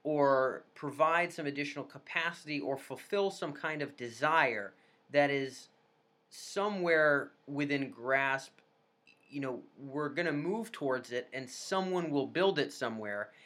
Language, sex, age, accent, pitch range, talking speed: English, male, 30-49, American, 135-170 Hz, 135 wpm